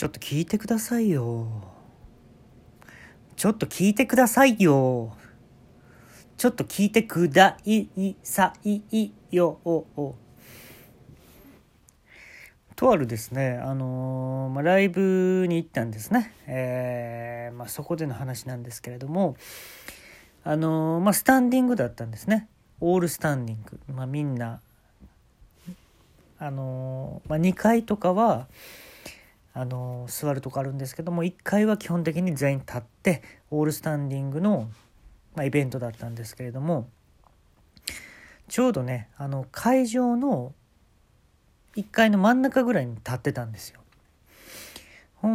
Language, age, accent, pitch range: Japanese, 40-59, native, 120-195 Hz